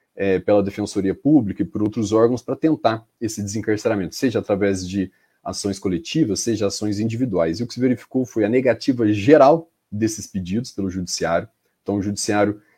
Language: Portuguese